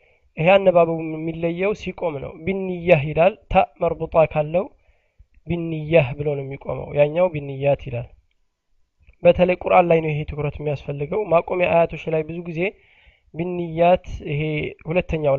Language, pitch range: Amharic, 155-195 Hz